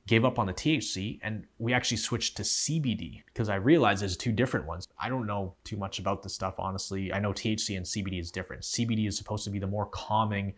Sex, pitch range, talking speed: male, 95-115 Hz, 240 wpm